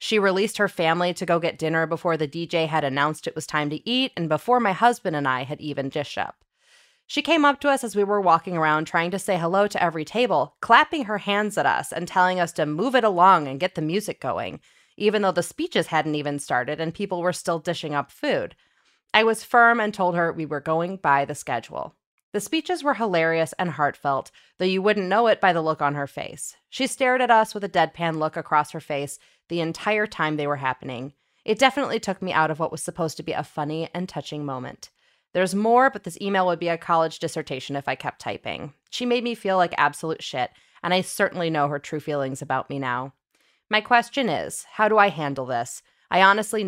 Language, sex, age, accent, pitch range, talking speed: English, female, 20-39, American, 155-210 Hz, 230 wpm